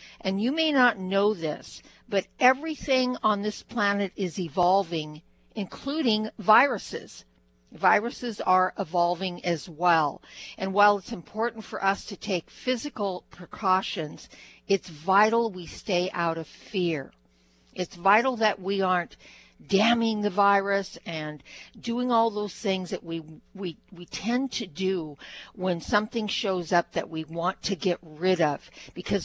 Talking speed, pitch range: 140 wpm, 175-215 Hz